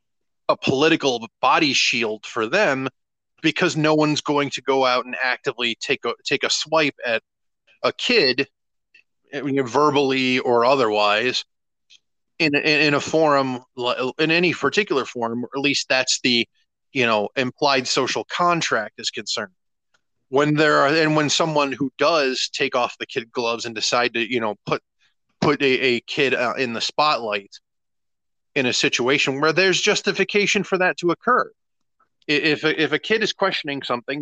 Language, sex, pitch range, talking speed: English, male, 125-155 Hz, 155 wpm